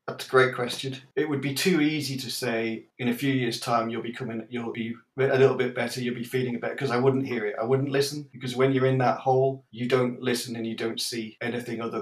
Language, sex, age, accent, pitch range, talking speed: English, male, 40-59, British, 115-130 Hz, 260 wpm